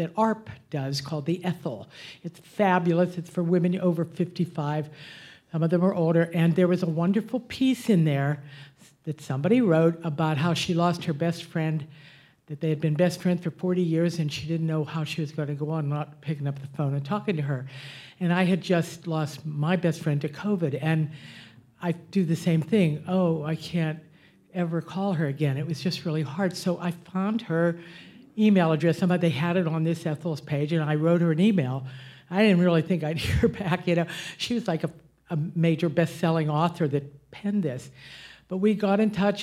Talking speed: 210 wpm